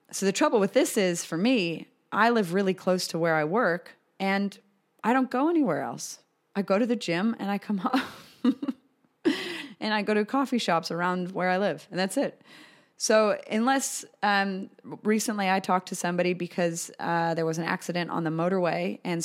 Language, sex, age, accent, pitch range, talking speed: English, female, 30-49, American, 165-215 Hz, 195 wpm